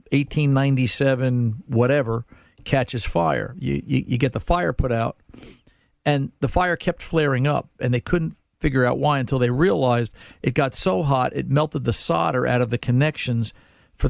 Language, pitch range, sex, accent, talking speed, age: English, 110-135 Hz, male, American, 170 wpm, 50-69